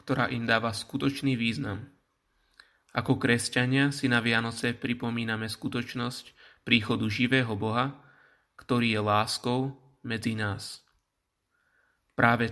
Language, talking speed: Slovak, 100 wpm